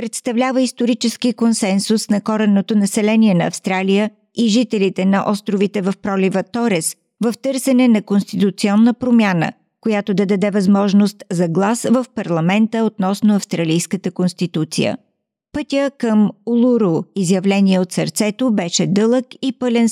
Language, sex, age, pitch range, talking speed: Bulgarian, female, 50-69, 190-230 Hz, 125 wpm